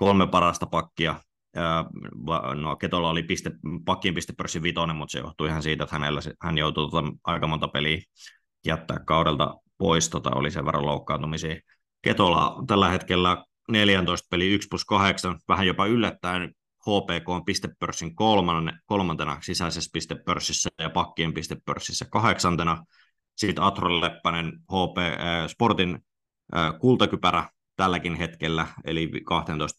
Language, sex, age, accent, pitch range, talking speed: Finnish, male, 20-39, native, 80-90 Hz, 125 wpm